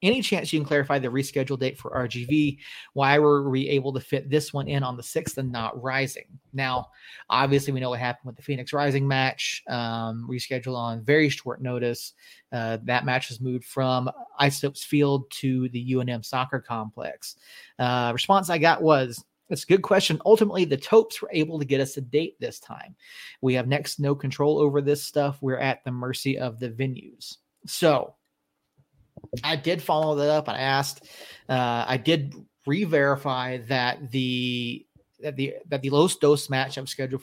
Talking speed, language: 185 wpm, English